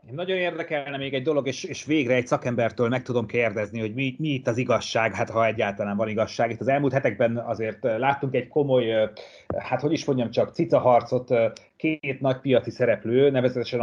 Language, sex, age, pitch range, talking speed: Hungarian, male, 30-49, 115-135 Hz, 195 wpm